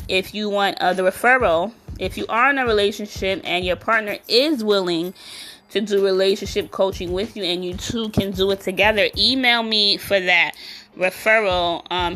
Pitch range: 160-195 Hz